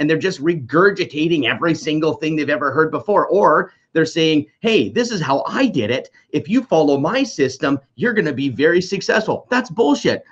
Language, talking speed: English, 200 wpm